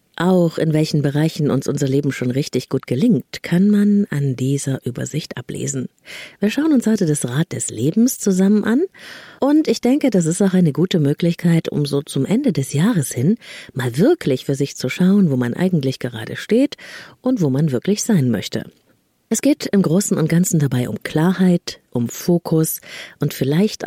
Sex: female